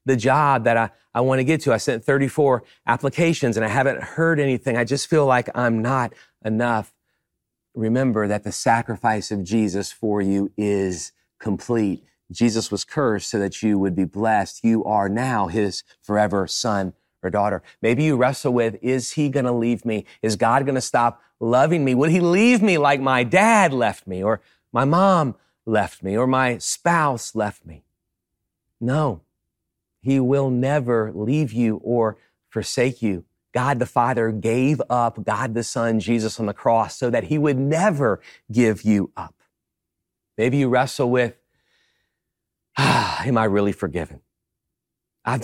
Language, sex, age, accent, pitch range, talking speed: English, male, 40-59, American, 105-130 Hz, 165 wpm